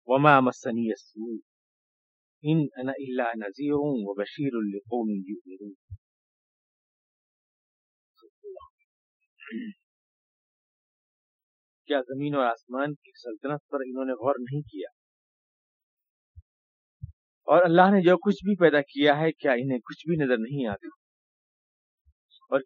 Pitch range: 110-180 Hz